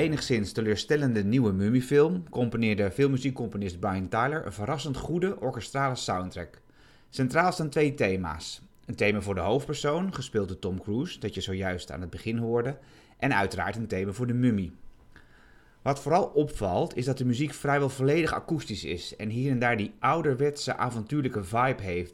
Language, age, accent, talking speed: Dutch, 30-49, Dutch, 165 wpm